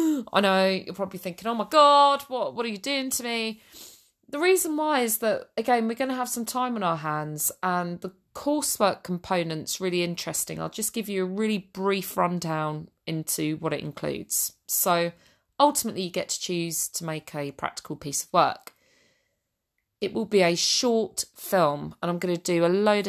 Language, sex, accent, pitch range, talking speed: English, female, British, 170-220 Hz, 190 wpm